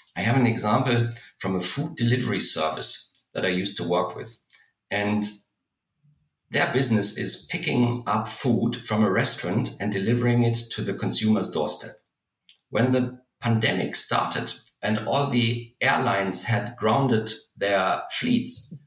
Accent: German